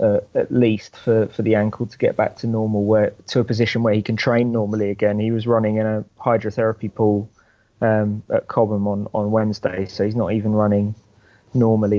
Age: 20-39